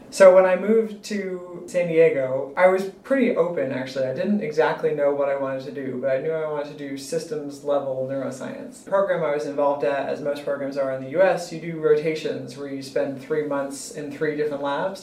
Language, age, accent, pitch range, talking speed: English, 30-49, American, 140-185 Hz, 220 wpm